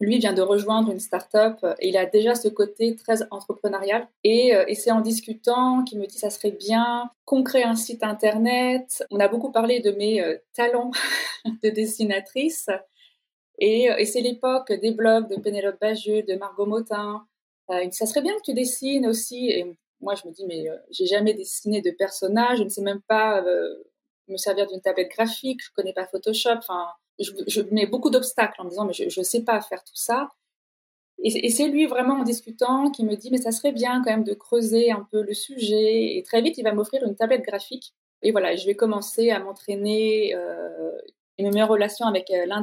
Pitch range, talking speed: 200-245 Hz, 220 wpm